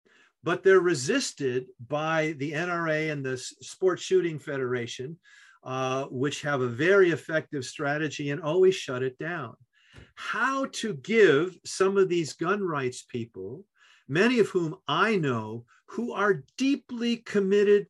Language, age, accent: English, 50-69, American